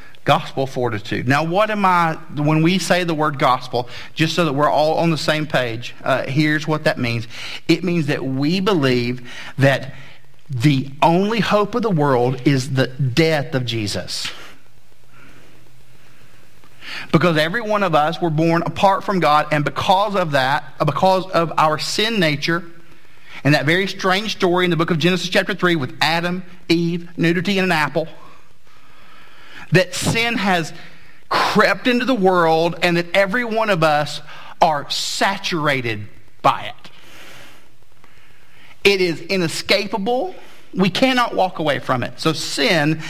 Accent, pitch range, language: American, 150-190 Hz, English